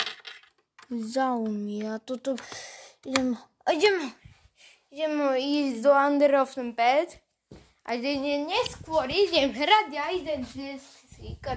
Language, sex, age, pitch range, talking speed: Slovak, female, 20-39, 265-380 Hz, 105 wpm